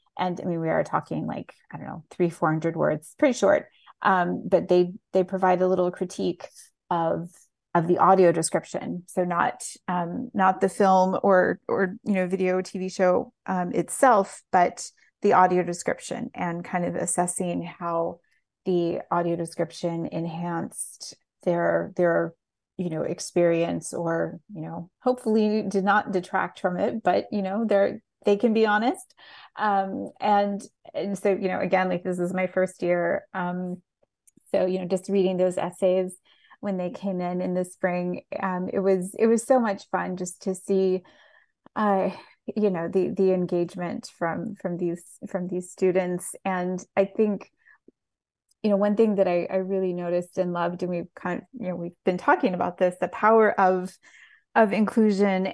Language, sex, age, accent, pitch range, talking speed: English, female, 30-49, American, 180-200 Hz, 175 wpm